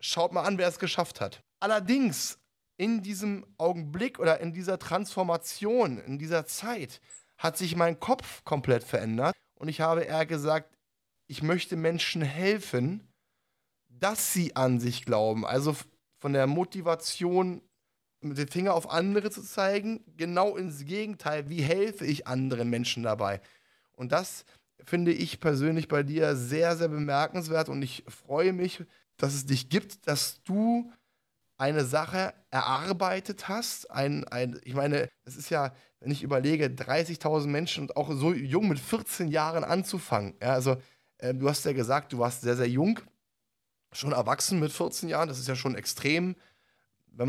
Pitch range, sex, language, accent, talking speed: 135-185 Hz, male, German, German, 160 wpm